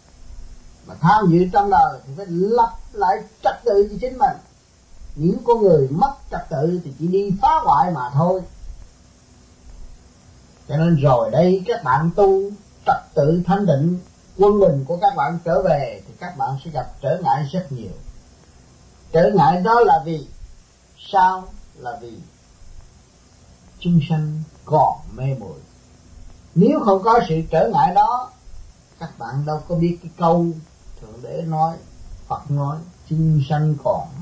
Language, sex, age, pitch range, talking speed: Vietnamese, male, 30-49, 130-195 Hz, 155 wpm